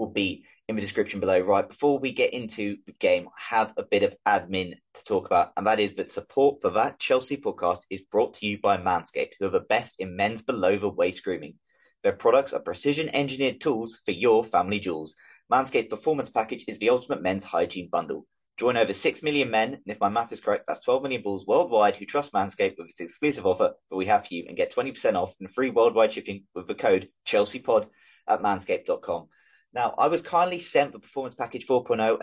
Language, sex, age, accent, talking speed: English, male, 20-39, British, 210 wpm